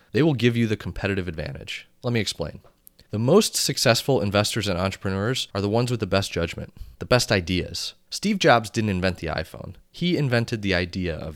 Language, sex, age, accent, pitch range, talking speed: English, male, 30-49, American, 85-115 Hz, 195 wpm